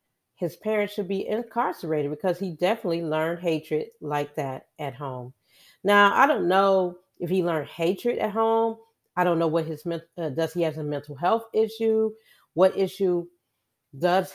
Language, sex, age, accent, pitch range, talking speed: English, female, 40-59, American, 145-180 Hz, 165 wpm